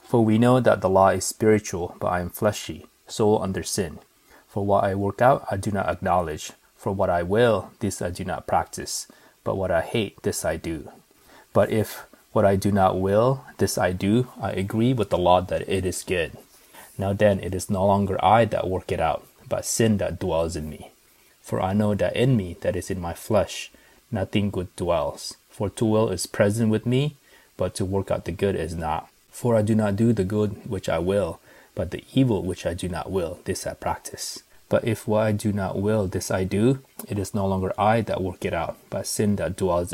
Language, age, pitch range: English, 20-39, 90-110 Hz